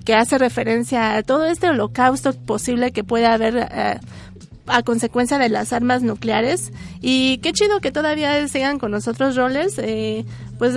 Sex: female